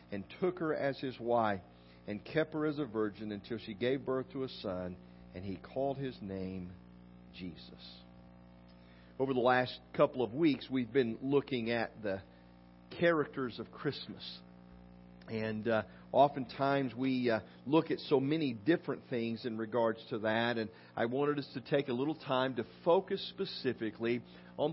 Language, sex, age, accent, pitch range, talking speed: English, male, 50-69, American, 95-145 Hz, 165 wpm